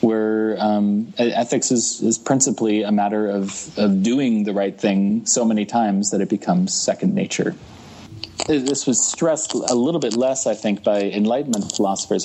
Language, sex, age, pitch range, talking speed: English, male, 30-49, 100-115 Hz, 165 wpm